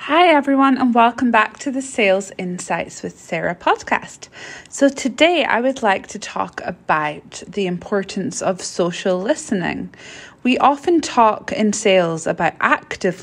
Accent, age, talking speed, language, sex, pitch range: British, 20-39, 145 wpm, English, female, 180-235 Hz